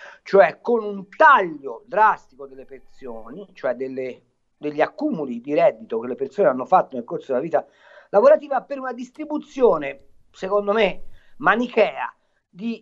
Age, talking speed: 50-69, 140 wpm